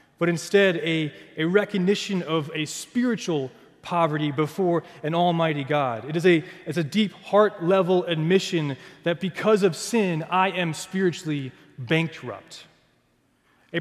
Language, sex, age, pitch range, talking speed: English, male, 20-39, 145-185 Hz, 125 wpm